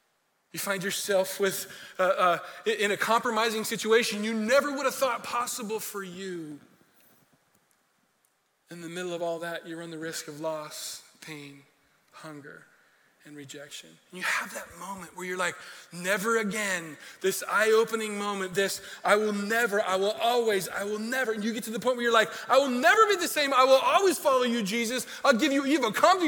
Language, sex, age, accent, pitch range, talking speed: English, male, 20-39, American, 185-245 Hz, 185 wpm